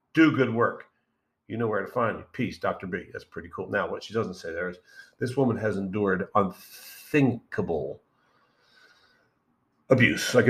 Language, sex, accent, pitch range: English, male, American, 115-145 Hz